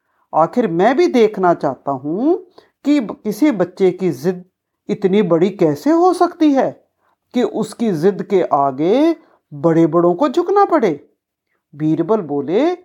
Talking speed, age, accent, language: 135 wpm, 50-69, native, Hindi